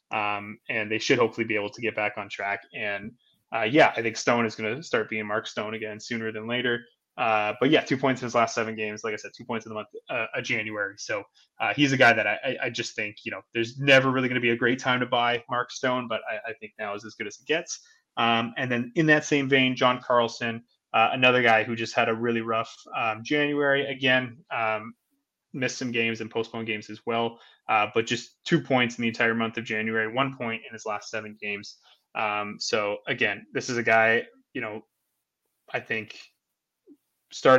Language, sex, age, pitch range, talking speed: English, male, 20-39, 110-130 Hz, 235 wpm